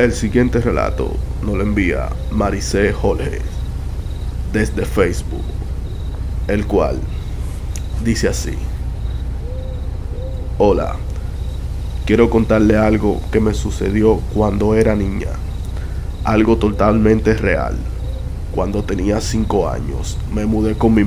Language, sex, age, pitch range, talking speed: Spanish, male, 20-39, 85-110 Hz, 100 wpm